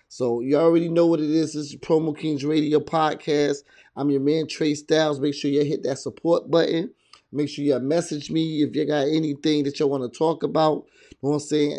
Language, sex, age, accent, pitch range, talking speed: English, male, 20-39, American, 140-155 Hz, 230 wpm